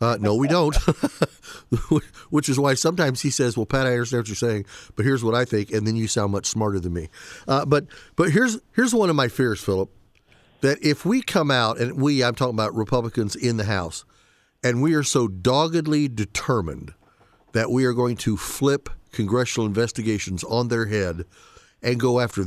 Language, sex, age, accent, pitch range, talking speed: English, male, 50-69, American, 110-145 Hz, 200 wpm